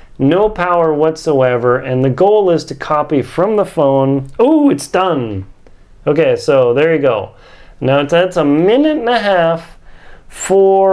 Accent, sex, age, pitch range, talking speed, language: American, male, 40-59, 140-190 Hz, 155 wpm, English